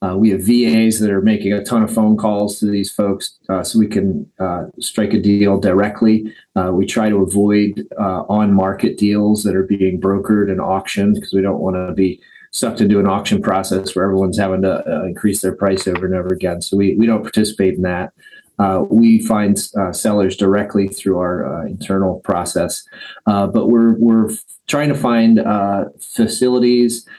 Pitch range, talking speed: 95-110 Hz, 195 wpm